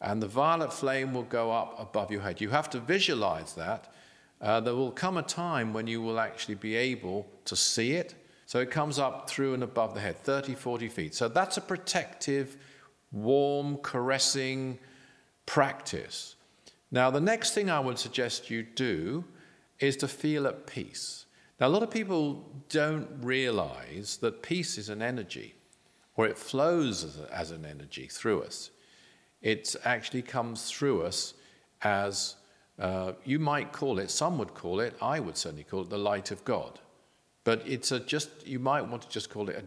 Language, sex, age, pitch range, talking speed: English, male, 50-69, 110-145 Hz, 180 wpm